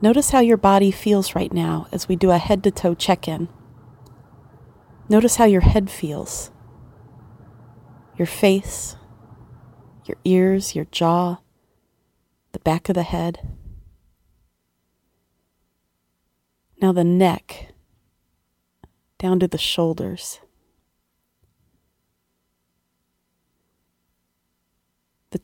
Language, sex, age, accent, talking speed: English, female, 30-49, American, 85 wpm